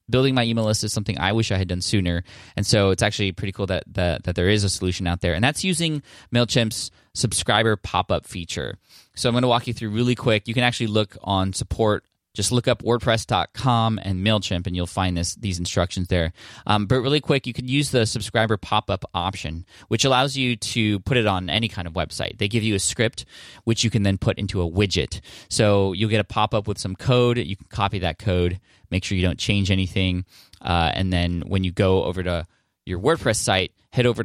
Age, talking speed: 20-39, 225 wpm